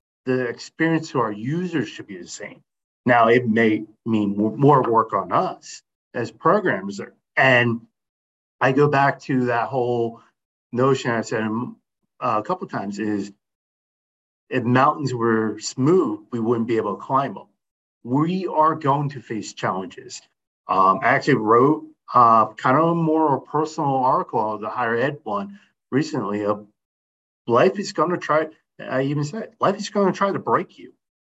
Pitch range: 110-145 Hz